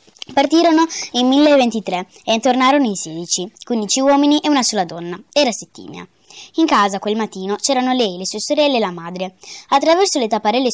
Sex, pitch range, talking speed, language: female, 195-275 Hz, 170 wpm, Italian